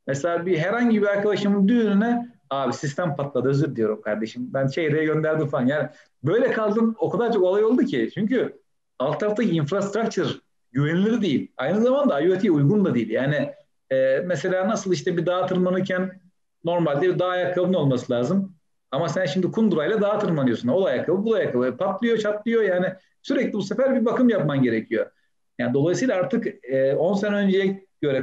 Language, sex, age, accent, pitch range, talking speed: Turkish, male, 40-59, native, 140-195 Hz, 160 wpm